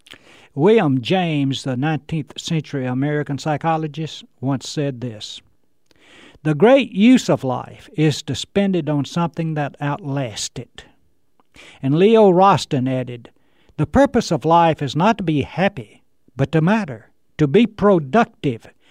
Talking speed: 135 wpm